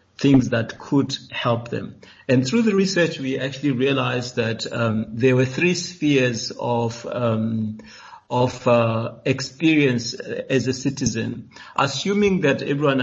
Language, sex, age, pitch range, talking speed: English, male, 60-79, 120-140 Hz, 135 wpm